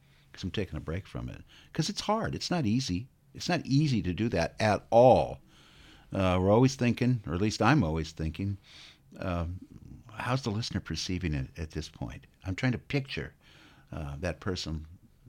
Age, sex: 60-79, male